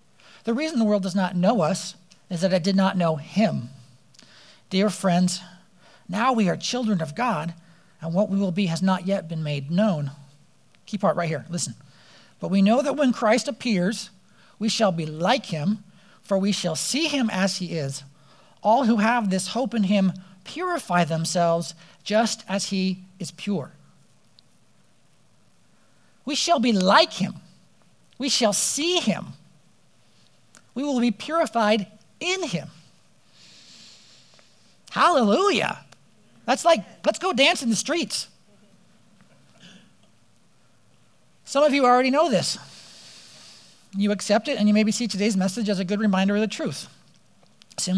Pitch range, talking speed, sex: 170-220 Hz, 150 wpm, male